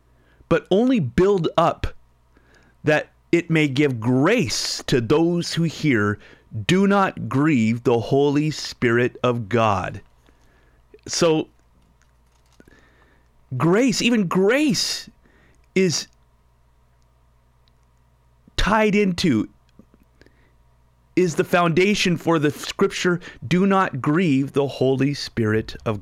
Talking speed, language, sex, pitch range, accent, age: 95 wpm, English, male, 90-145 Hz, American, 30-49